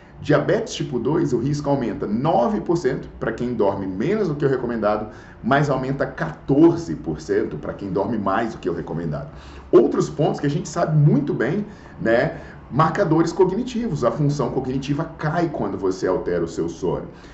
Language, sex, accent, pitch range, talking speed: Portuguese, male, Brazilian, 130-170 Hz, 165 wpm